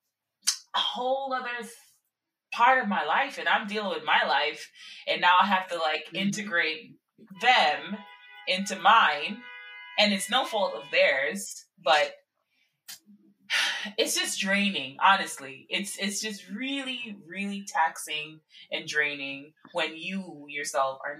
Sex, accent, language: female, American, English